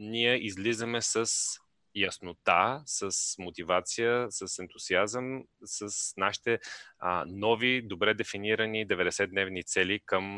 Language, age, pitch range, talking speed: Bulgarian, 30-49, 95-115 Hz, 100 wpm